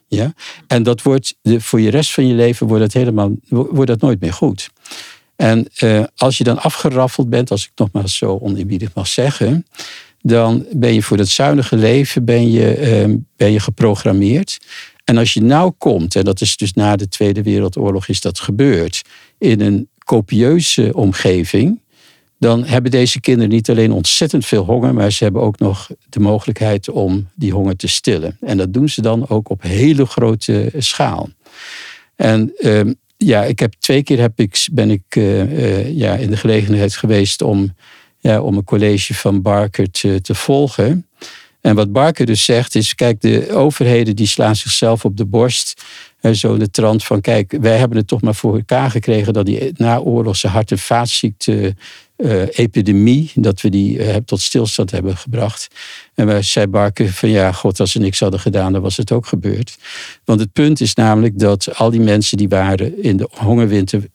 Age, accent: 50-69, Dutch